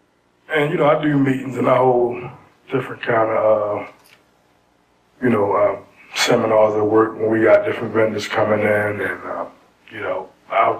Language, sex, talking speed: English, male, 170 wpm